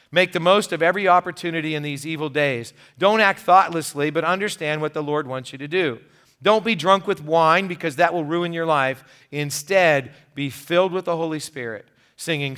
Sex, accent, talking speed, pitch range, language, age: male, American, 195 wpm, 130-160 Hz, English, 40-59